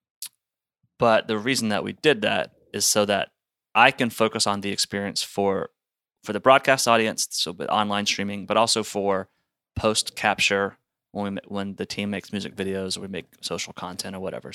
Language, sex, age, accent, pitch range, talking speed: English, male, 30-49, American, 95-110 Hz, 180 wpm